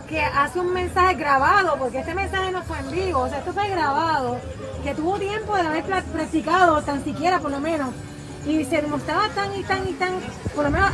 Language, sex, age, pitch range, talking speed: Spanish, female, 30-49, 290-370 Hz, 225 wpm